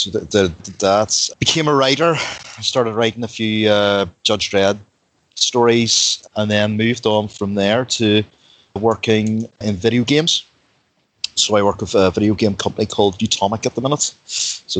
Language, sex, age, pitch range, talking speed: English, male, 30-49, 95-115 Hz, 160 wpm